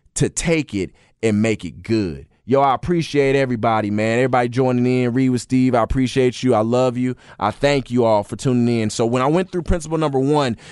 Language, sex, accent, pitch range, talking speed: English, male, American, 120-155 Hz, 220 wpm